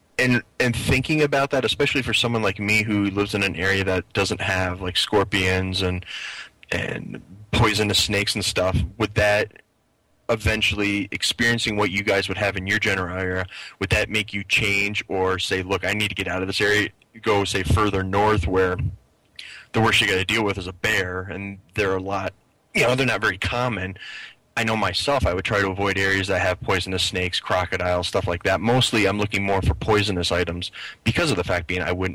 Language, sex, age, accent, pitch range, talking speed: English, male, 20-39, American, 95-110 Hz, 205 wpm